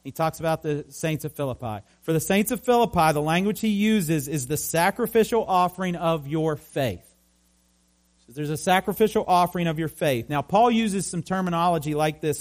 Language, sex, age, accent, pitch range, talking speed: English, male, 40-59, American, 150-195 Hz, 180 wpm